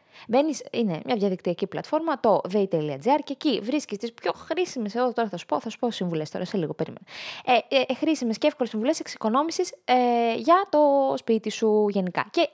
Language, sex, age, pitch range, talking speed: Greek, female, 20-39, 185-275 Hz, 185 wpm